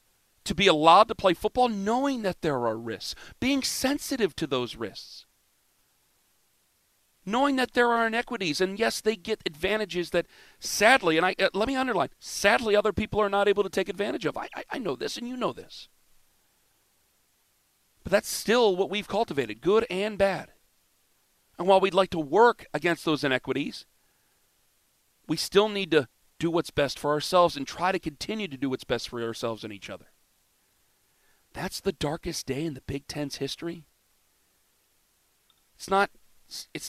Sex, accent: male, American